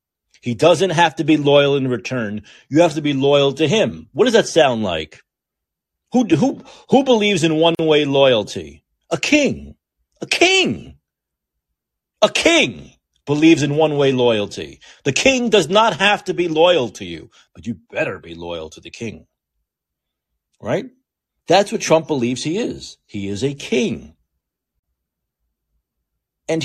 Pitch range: 105-160 Hz